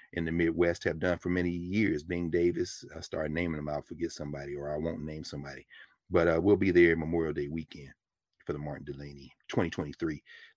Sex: male